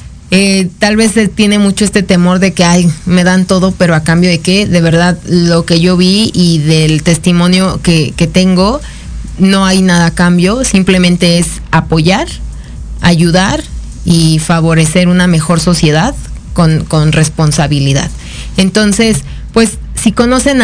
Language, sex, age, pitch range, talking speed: Spanish, female, 30-49, 165-195 Hz, 150 wpm